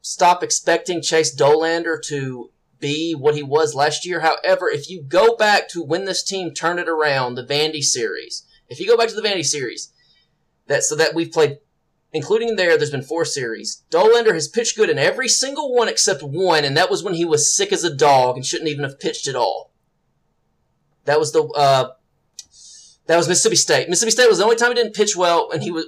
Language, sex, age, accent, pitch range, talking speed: English, male, 30-49, American, 150-210 Hz, 215 wpm